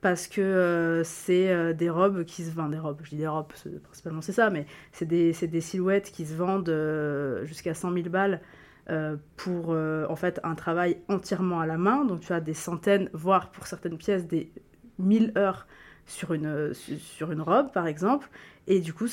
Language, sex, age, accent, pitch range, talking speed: French, female, 20-39, French, 165-200 Hz, 215 wpm